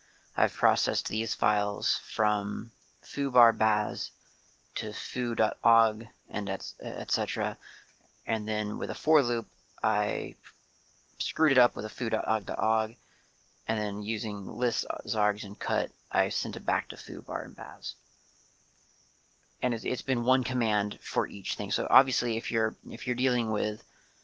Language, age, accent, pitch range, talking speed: English, 30-49, American, 105-120 Hz, 140 wpm